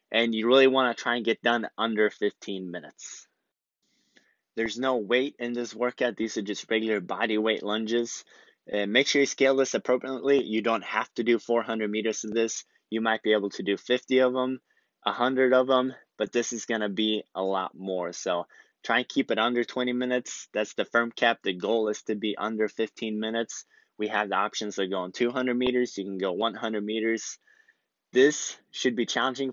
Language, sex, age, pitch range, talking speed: English, male, 20-39, 105-120 Hz, 200 wpm